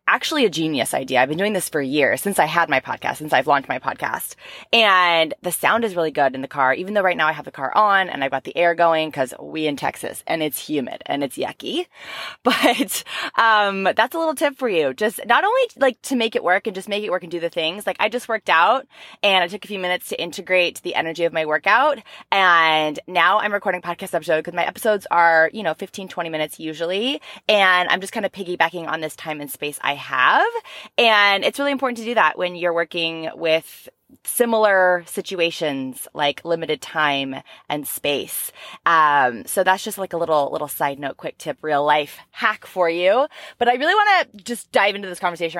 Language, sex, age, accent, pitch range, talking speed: English, female, 20-39, American, 160-215 Hz, 225 wpm